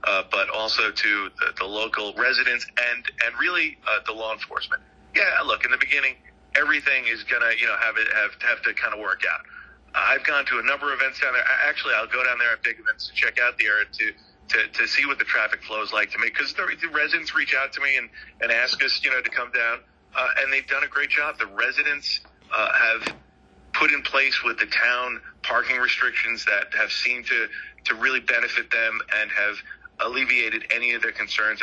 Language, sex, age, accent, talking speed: English, male, 30-49, American, 230 wpm